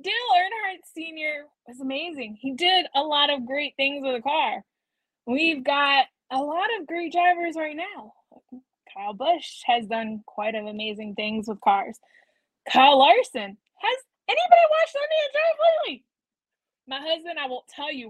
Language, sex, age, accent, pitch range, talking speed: English, female, 20-39, American, 245-350 Hz, 160 wpm